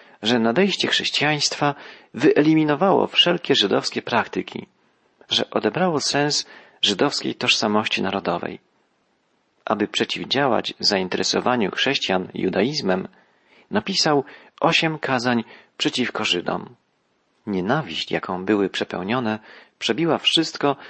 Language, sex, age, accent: Polish, male, 40-59, native